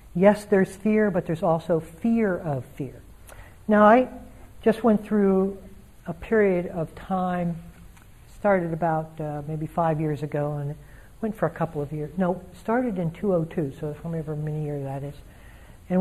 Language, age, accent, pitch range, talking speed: English, 60-79, American, 150-200 Hz, 160 wpm